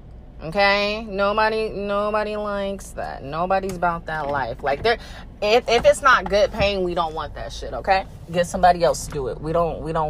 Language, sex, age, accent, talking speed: English, female, 20-39, American, 190 wpm